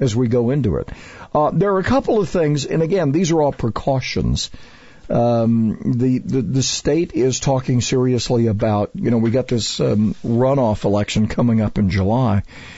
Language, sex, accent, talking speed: English, male, American, 185 wpm